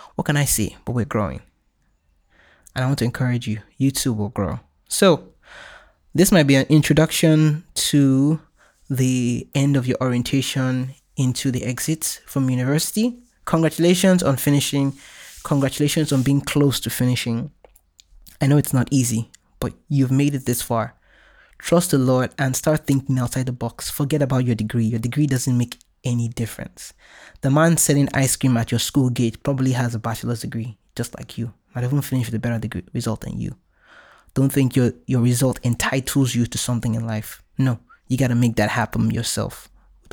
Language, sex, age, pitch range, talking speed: English, male, 20-39, 120-145 Hz, 180 wpm